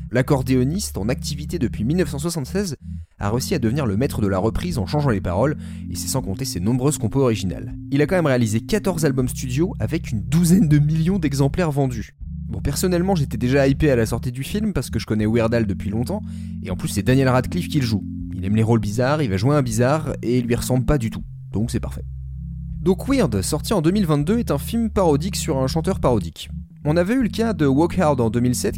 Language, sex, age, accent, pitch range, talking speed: French, male, 30-49, French, 105-160 Hz, 230 wpm